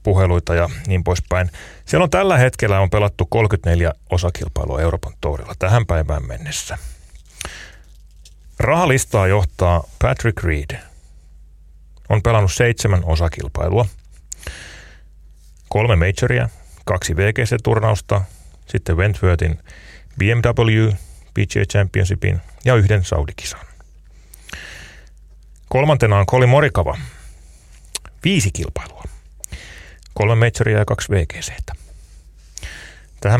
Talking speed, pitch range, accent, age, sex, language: 90 wpm, 80-105 Hz, native, 30-49, male, Finnish